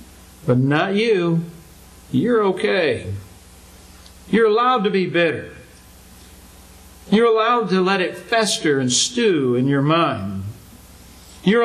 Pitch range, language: 115-185 Hz, English